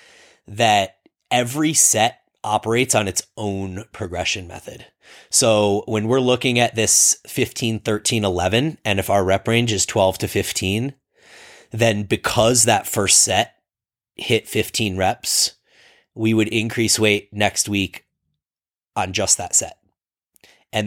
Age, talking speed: 30-49, 130 wpm